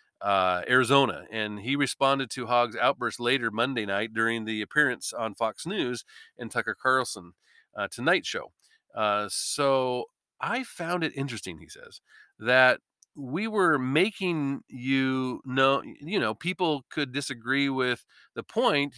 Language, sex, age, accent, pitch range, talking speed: English, male, 40-59, American, 120-175 Hz, 140 wpm